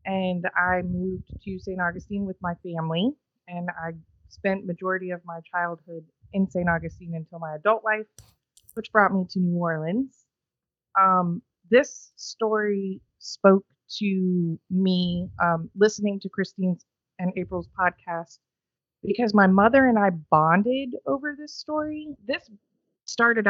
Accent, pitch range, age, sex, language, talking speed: American, 170-200 Hz, 30-49, female, English, 135 wpm